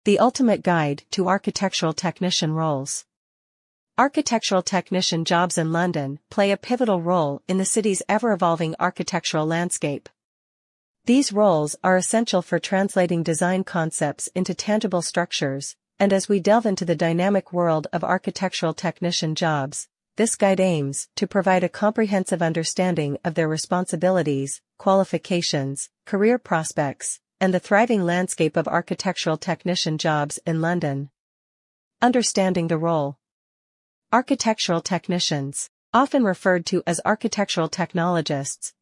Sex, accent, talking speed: female, American, 125 wpm